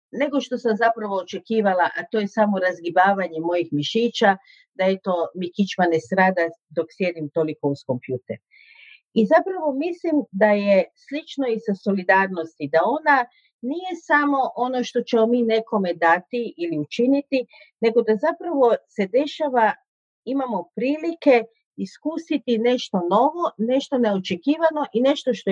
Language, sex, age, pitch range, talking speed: Croatian, female, 50-69, 200-280 Hz, 145 wpm